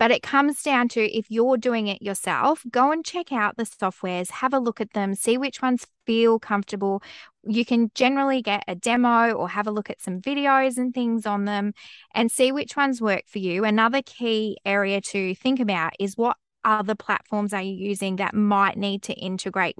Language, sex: English, female